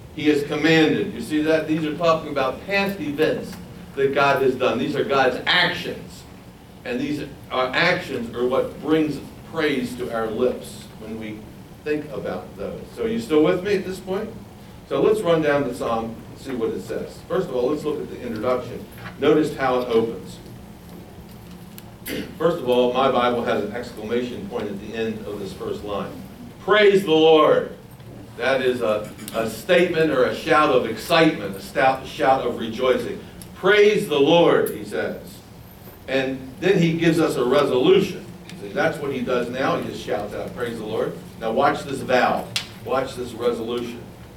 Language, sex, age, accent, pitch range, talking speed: English, male, 60-79, American, 120-160 Hz, 180 wpm